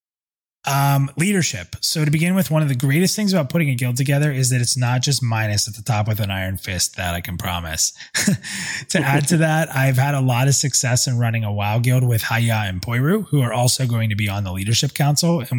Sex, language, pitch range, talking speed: male, English, 105-140 Hz, 245 wpm